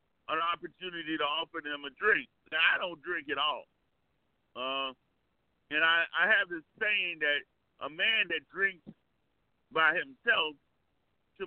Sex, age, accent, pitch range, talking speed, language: male, 50-69, American, 165-225 Hz, 145 wpm, English